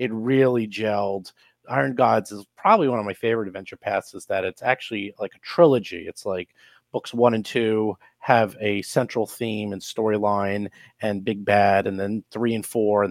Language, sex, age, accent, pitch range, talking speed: English, male, 30-49, American, 110-135 Hz, 190 wpm